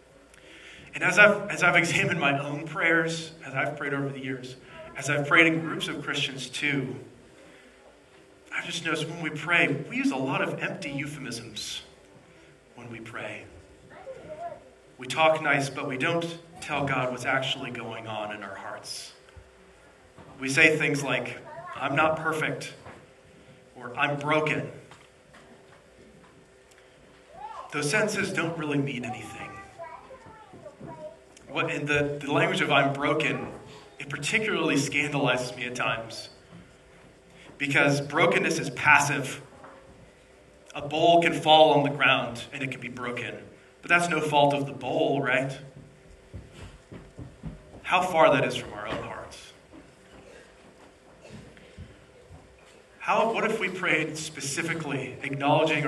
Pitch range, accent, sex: 130-160 Hz, American, male